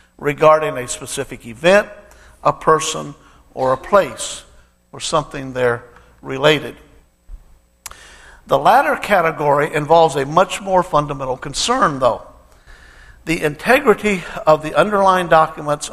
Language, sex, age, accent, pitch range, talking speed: English, male, 60-79, American, 115-170 Hz, 110 wpm